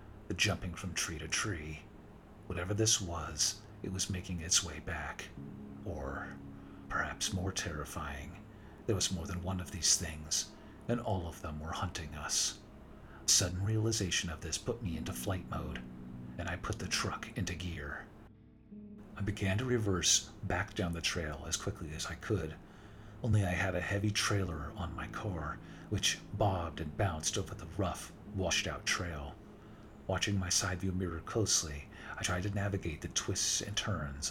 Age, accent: 50-69, American